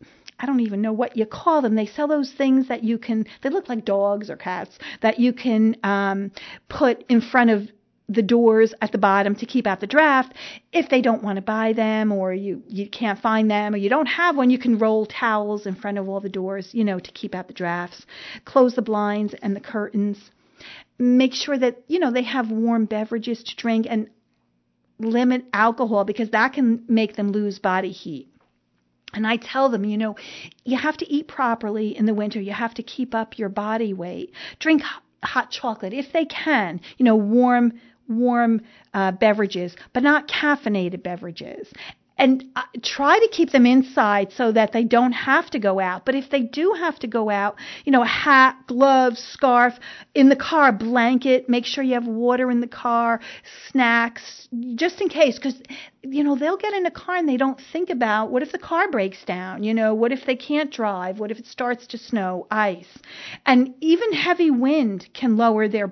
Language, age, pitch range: English, 40-59, 210-260 Hz